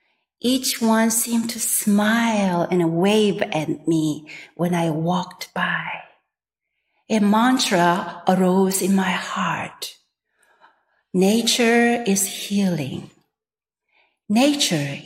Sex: female